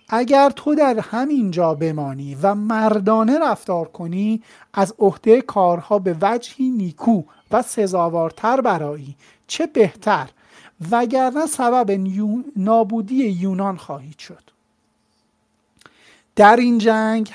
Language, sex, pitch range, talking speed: Persian, male, 175-235 Hz, 105 wpm